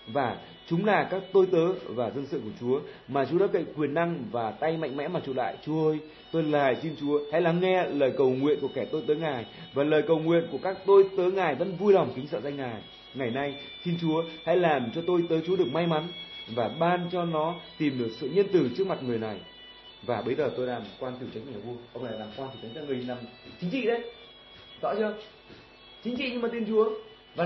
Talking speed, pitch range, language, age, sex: 245 wpm, 135-190 Hz, Vietnamese, 20-39, male